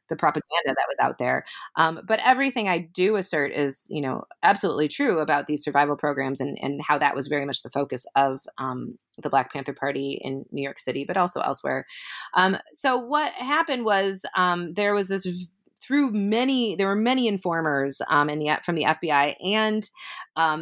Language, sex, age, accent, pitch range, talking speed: English, female, 30-49, American, 145-210 Hz, 200 wpm